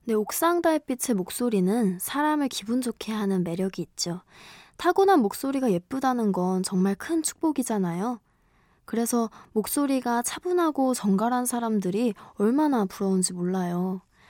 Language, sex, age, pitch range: Korean, female, 20-39, 195-275 Hz